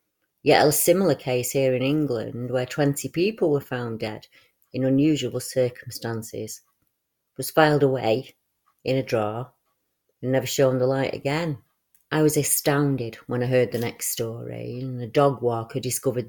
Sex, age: female, 30-49